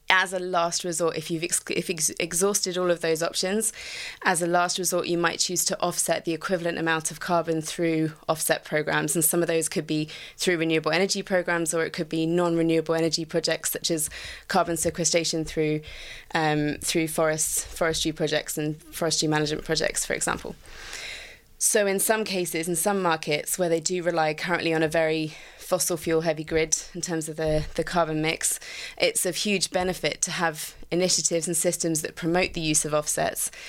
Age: 20-39